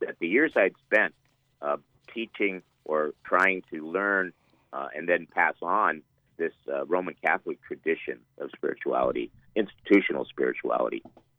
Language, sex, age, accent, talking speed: English, male, 50-69, American, 125 wpm